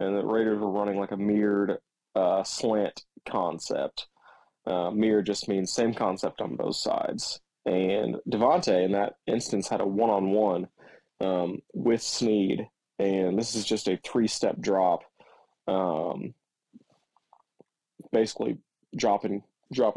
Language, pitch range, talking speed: English, 100-115 Hz, 130 wpm